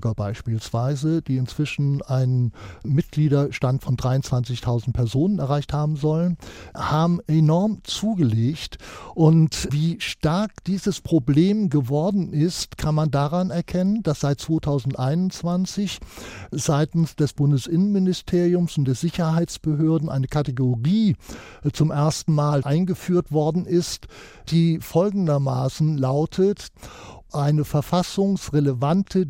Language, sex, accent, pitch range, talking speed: German, male, German, 145-190 Hz, 95 wpm